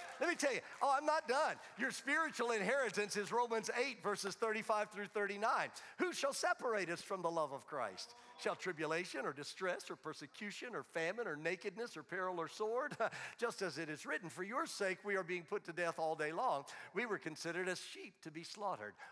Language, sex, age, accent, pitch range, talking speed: English, male, 50-69, American, 180-245 Hz, 205 wpm